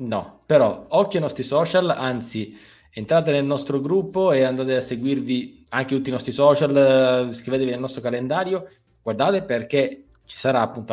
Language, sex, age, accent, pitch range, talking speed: Italian, male, 20-39, native, 105-140 Hz, 160 wpm